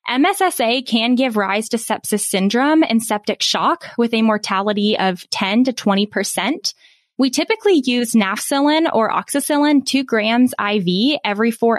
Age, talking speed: 10-29, 145 wpm